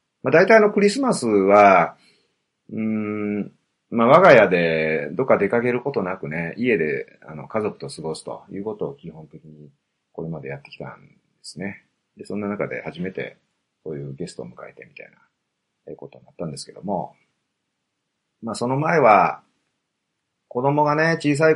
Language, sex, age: Japanese, male, 30-49